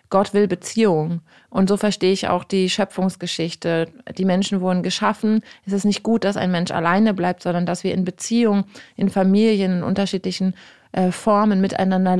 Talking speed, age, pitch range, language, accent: 170 wpm, 30-49, 185-210 Hz, German, German